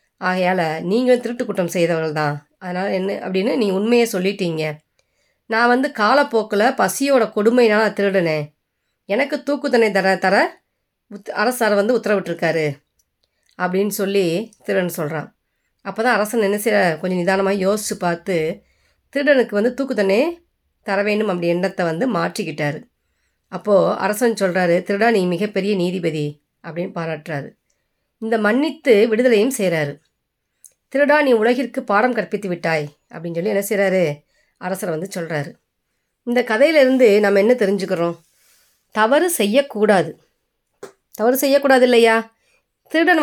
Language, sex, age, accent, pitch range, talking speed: Tamil, female, 30-49, native, 185-250 Hz, 110 wpm